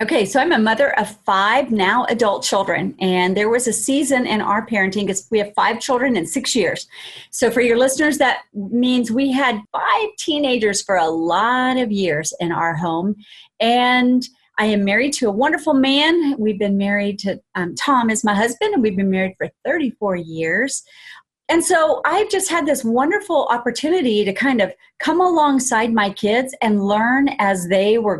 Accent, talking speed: American, 185 wpm